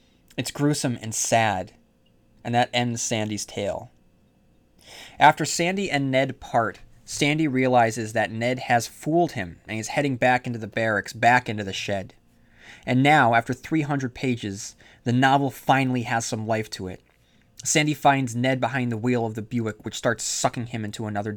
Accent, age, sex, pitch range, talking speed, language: American, 20-39, male, 110-130 Hz, 170 wpm, English